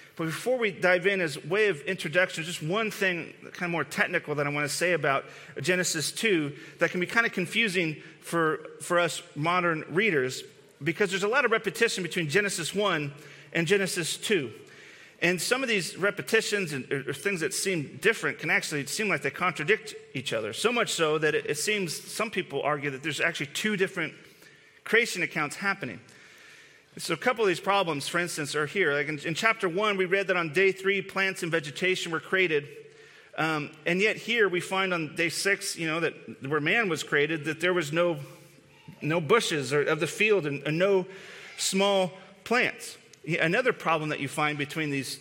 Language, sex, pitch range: English, male, 155-195 Hz